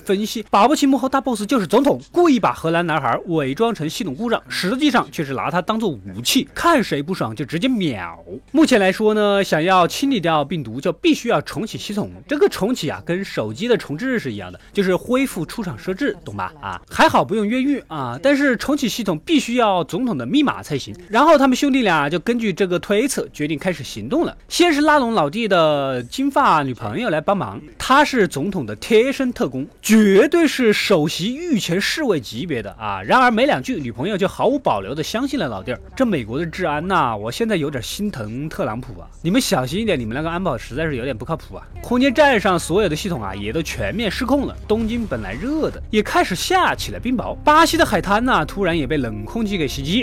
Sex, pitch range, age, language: male, 155-245 Hz, 20-39, Chinese